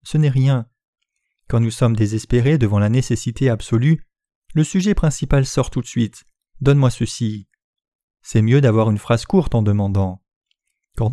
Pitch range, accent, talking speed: 115-160 Hz, French, 155 wpm